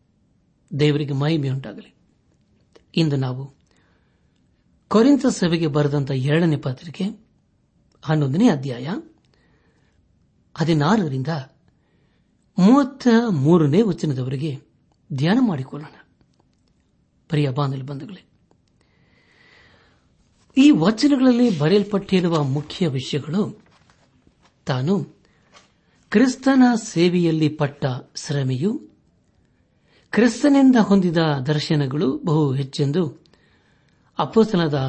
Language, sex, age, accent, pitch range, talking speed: Kannada, male, 60-79, native, 140-195 Hz, 55 wpm